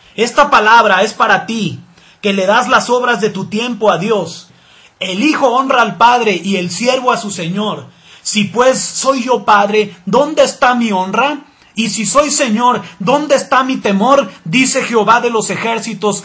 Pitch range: 200-255 Hz